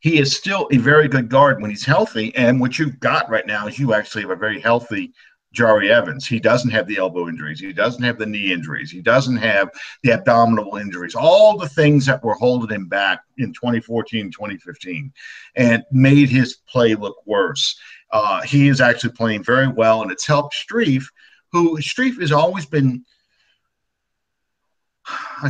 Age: 50-69